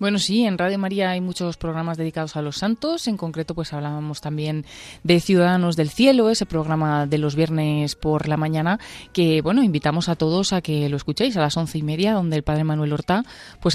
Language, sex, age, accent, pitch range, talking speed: Spanish, female, 30-49, Spanish, 150-185 Hz, 215 wpm